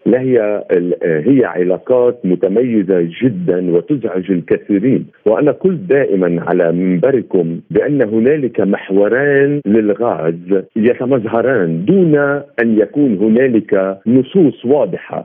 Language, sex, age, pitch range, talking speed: Arabic, male, 50-69, 100-145 Hz, 95 wpm